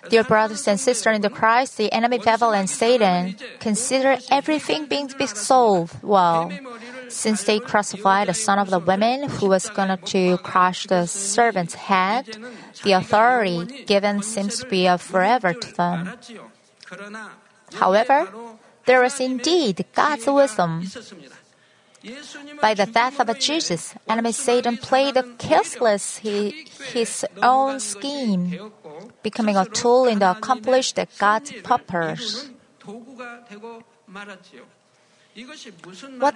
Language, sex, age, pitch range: Korean, female, 30-49, 195-250 Hz